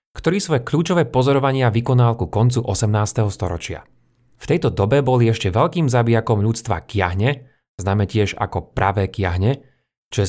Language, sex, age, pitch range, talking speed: Slovak, male, 30-49, 105-135 Hz, 145 wpm